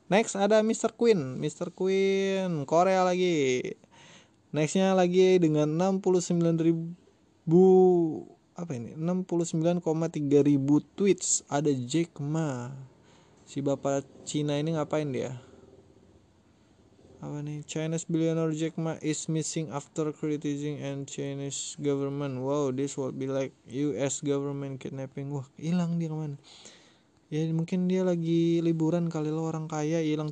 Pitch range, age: 130-165 Hz, 20-39